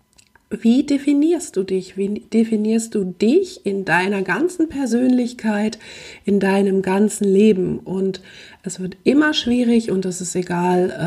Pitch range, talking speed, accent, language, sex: 180-215 Hz, 135 wpm, German, German, female